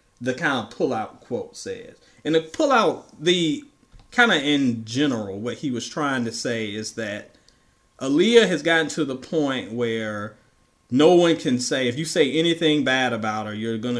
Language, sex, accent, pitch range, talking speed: English, male, American, 115-145 Hz, 185 wpm